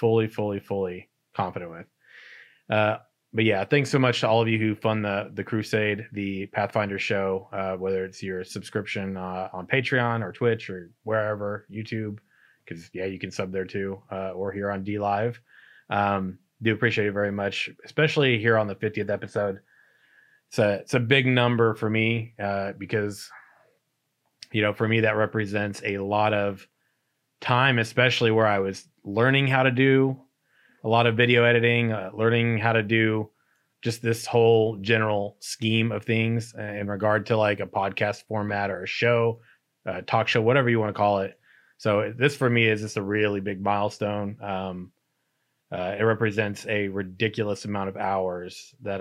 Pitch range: 100-115 Hz